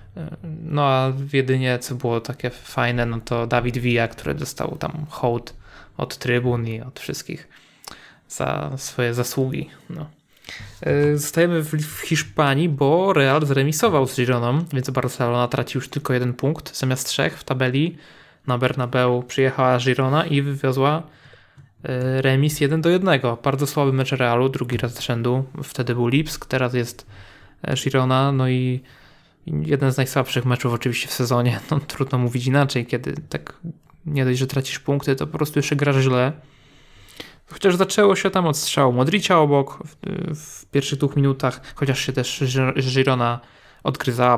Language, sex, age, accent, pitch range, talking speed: Polish, male, 20-39, native, 125-150 Hz, 150 wpm